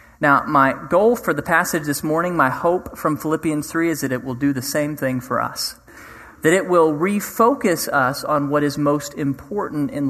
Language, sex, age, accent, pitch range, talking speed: English, male, 40-59, American, 140-175 Hz, 200 wpm